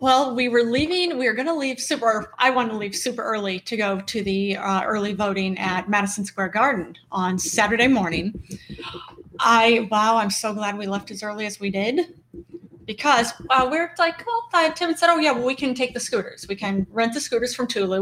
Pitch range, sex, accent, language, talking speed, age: 200-255 Hz, female, American, English, 215 wpm, 30-49